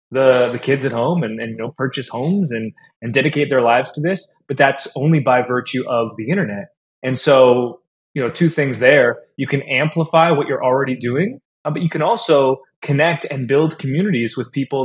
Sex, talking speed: male, 200 wpm